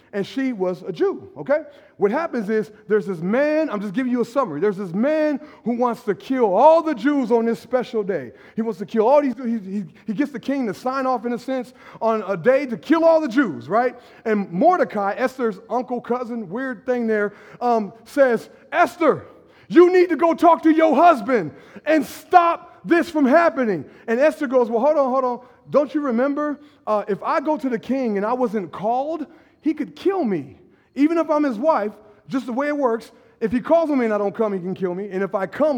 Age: 30-49